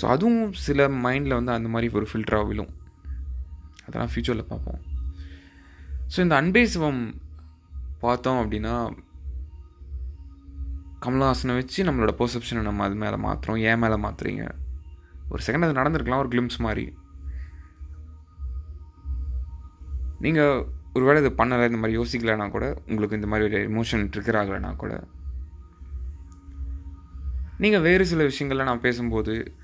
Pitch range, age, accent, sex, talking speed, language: 70-120 Hz, 20-39, native, male, 115 wpm, Tamil